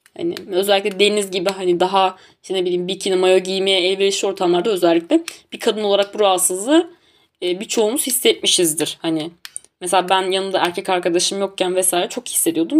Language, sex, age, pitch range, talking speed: Turkish, female, 20-39, 190-255 Hz, 150 wpm